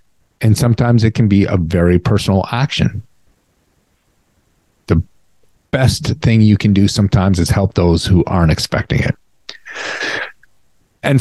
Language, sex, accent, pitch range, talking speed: English, male, American, 90-115 Hz, 130 wpm